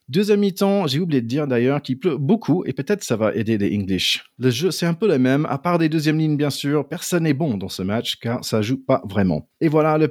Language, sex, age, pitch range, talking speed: French, male, 30-49, 120-160 Hz, 265 wpm